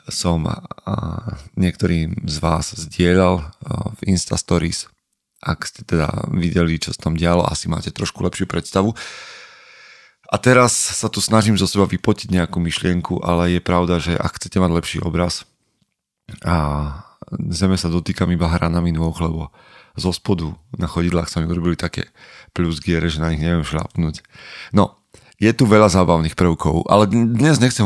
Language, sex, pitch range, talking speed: Slovak, male, 85-95 Hz, 150 wpm